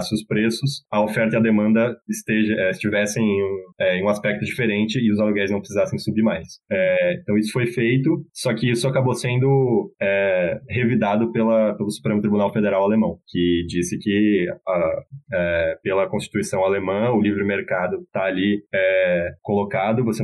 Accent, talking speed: Brazilian, 170 wpm